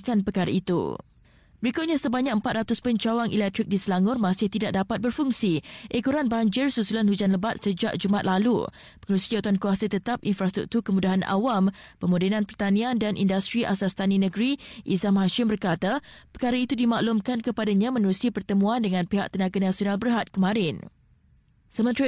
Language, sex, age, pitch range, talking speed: Malay, female, 20-39, 195-235 Hz, 140 wpm